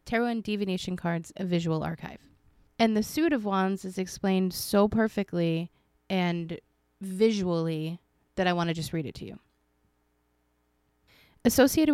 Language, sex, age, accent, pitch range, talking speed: English, female, 20-39, American, 170-200 Hz, 140 wpm